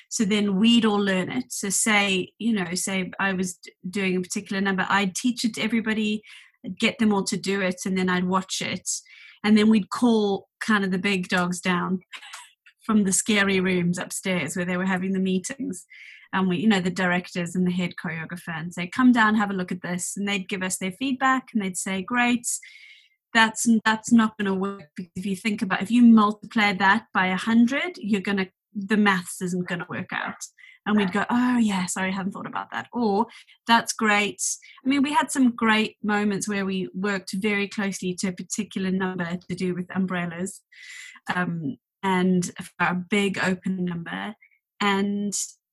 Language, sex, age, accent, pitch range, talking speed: English, female, 30-49, British, 185-220 Hz, 200 wpm